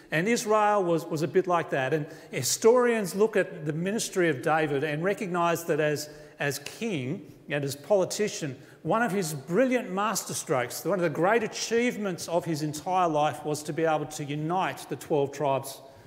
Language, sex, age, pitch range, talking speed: English, male, 40-59, 145-185 Hz, 185 wpm